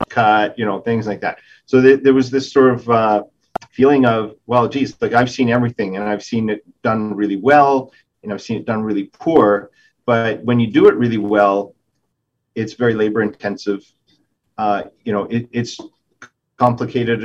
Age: 40-59